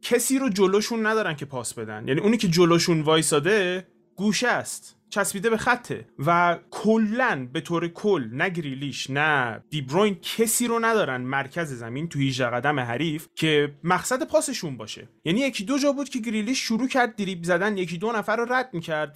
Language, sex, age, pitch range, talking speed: Persian, male, 30-49, 140-210 Hz, 175 wpm